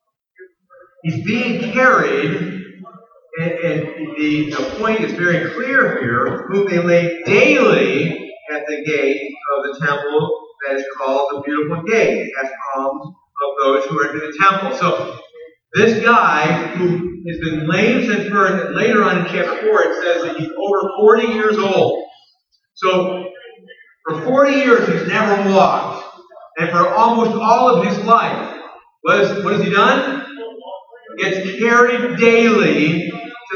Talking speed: 150 wpm